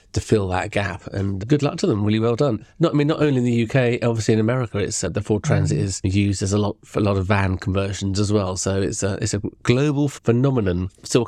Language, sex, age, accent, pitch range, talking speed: English, male, 30-49, British, 100-120 Hz, 265 wpm